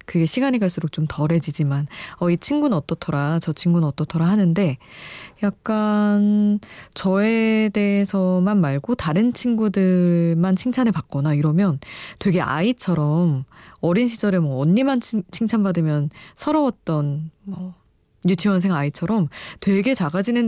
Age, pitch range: 20-39, 155-205 Hz